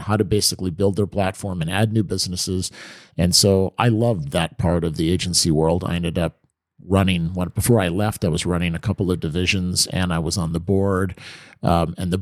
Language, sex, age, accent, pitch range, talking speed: English, male, 50-69, American, 90-105 Hz, 215 wpm